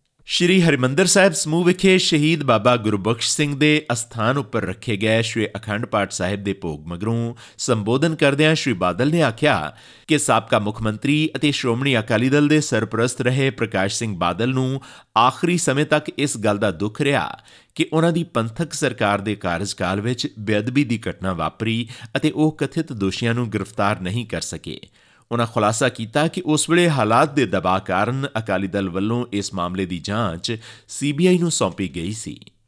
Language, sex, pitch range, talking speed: Punjabi, male, 105-150 Hz, 160 wpm